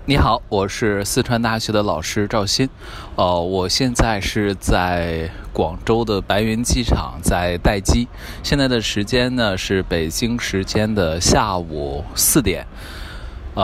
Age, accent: 20-39, native